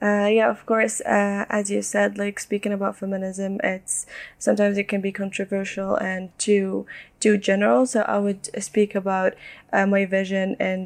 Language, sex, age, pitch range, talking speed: English, female, 10-29, 190-210 Hz, 170 wpm